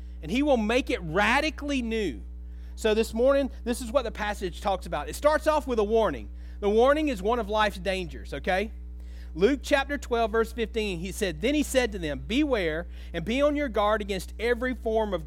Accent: American